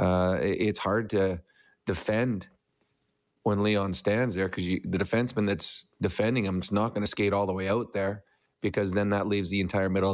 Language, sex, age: English, male, 30-49